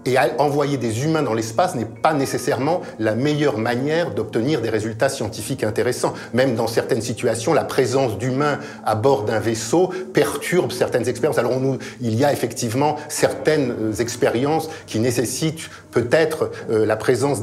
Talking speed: 150 wpm